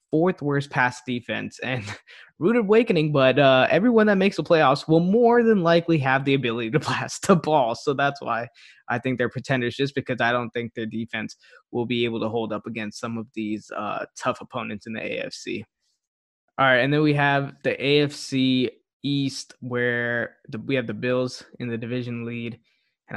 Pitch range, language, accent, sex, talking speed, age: 120-150 Hz, English, American, male, 190 wpm, 20-39